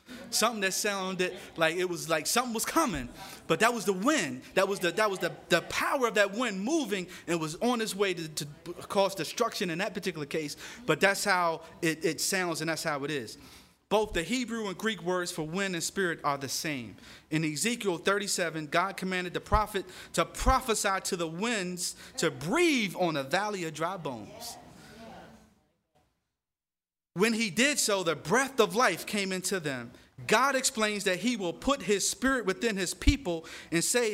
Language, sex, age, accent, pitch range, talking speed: English, male, 30-49, American, 170-220 Hz, 190 wpm